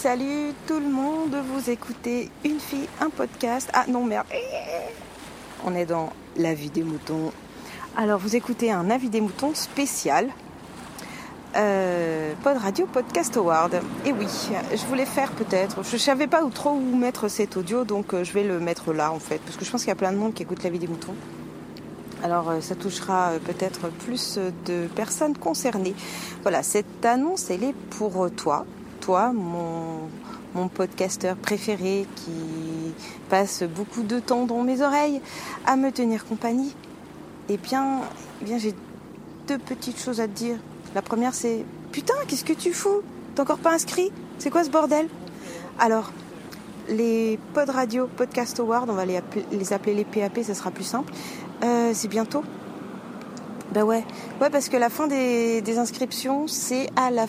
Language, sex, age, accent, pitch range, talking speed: French, female, 40-59, French, 185-260 Hz, 175 wpm